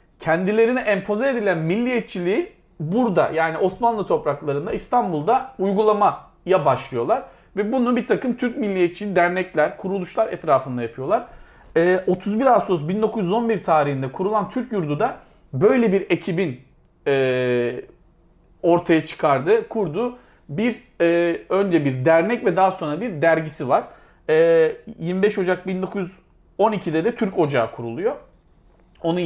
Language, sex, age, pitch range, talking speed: Turkish, male, 40-59, 155-205 Hz, 105 wpm